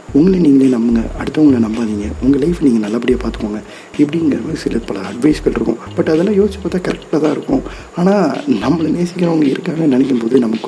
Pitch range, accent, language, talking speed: 110-170 Hz, native, Tamil, 170 wpm